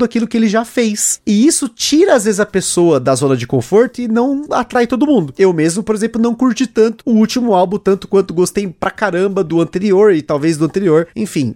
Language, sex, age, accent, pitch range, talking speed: Portuguese, male, 30-49, Brazilian, 160-215 Hz, 225 wpm